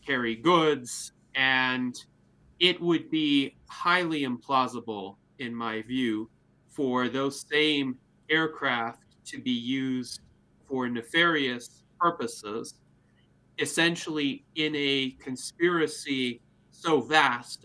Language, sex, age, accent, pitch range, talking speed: English, male, 30-49, American, 110-140 Hz, 90 wpm